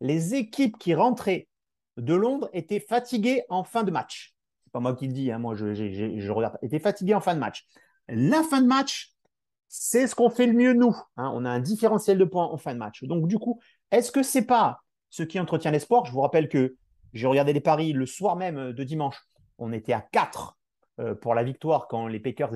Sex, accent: male, French